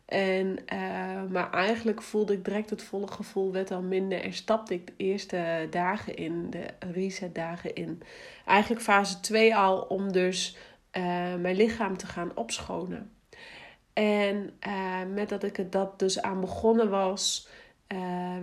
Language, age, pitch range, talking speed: Dutch, 40-59, 190-235 Hz, 155 wpm